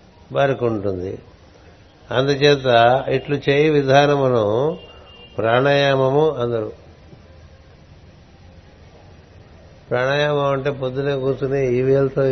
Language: Telugu